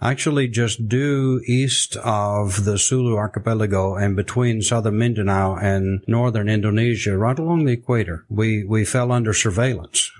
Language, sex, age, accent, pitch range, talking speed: English, male, 60-79, American, 105-125 Hz, 140 wpm